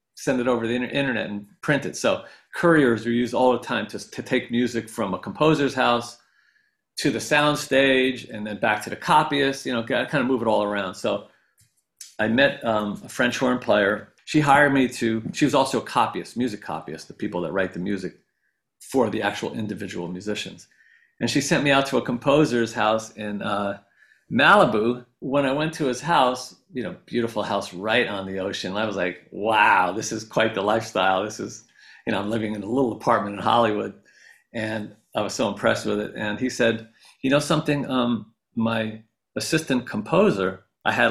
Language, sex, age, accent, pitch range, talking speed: English, male, 40-59, American, 105-130 Hz, 200 wpm